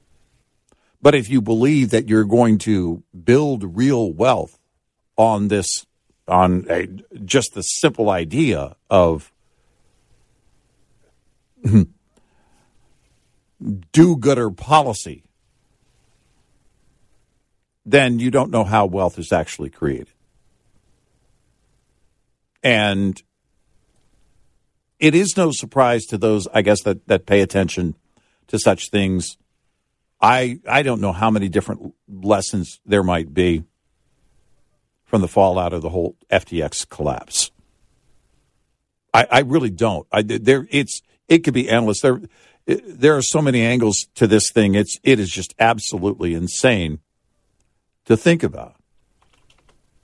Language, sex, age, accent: English, male, 50-69, American